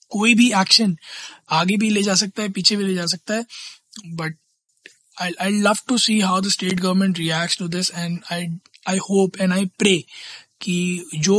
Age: 20-39